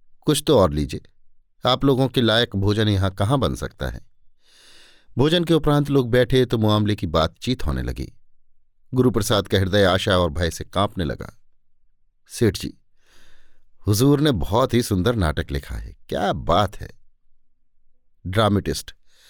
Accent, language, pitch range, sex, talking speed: native, Hindi, 95-130 Hz, male, 150 wpm